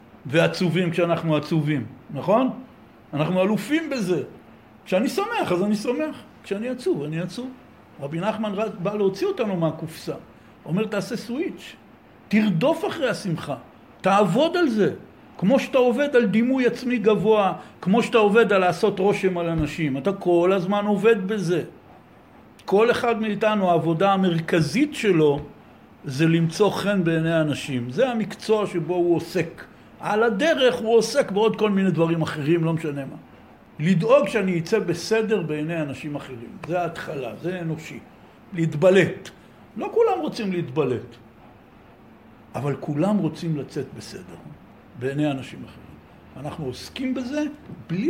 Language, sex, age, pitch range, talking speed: Hebrew, male, 60-79, 155-220 Hz, 135 wpm